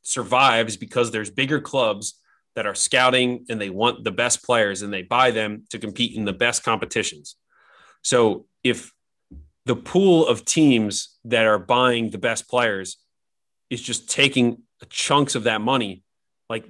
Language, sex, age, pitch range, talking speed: English, male, 30-49, 110-125 Hz, 160 wpm